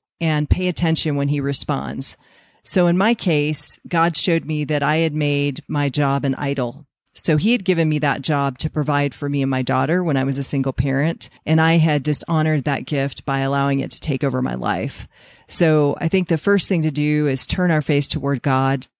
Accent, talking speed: American, 220 wpm